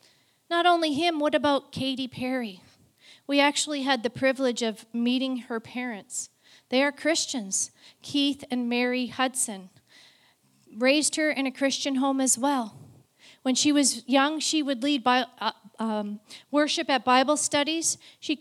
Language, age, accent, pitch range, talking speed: English, 40-59, American, 245-285 Hz, 145 wpm